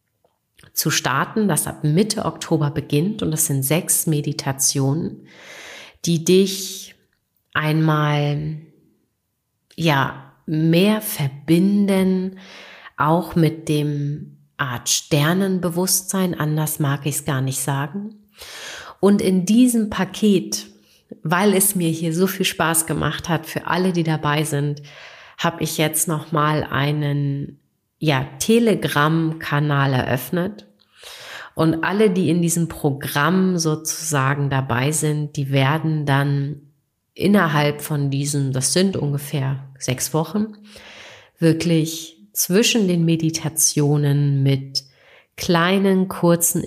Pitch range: 145-180 Hz